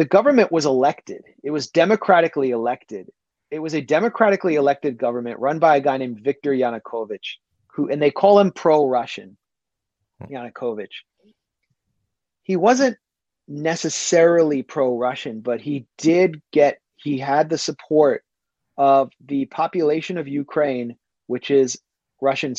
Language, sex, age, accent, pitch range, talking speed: English, male, 30-49, American, 125-165 Hz, 125 wpm